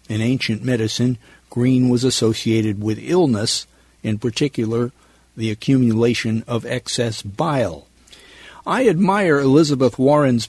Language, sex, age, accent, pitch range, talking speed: English, male, 50-69, American, 110-135 Hz, 110 wpm